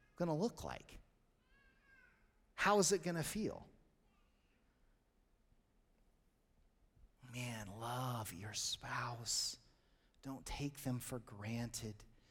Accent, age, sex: American, 30-49, male